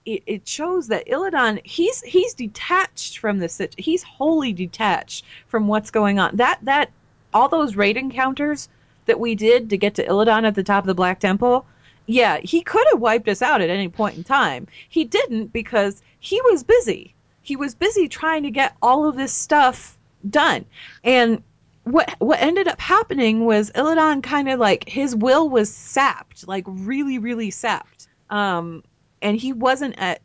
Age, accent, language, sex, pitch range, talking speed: 30-49, American, English, female, 185-260 Hz, 180 wpm